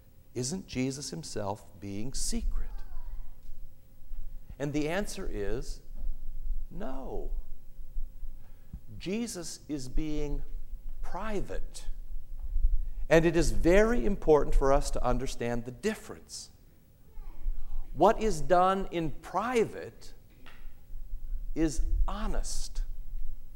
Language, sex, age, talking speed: English, male, 60-79, 80 wpm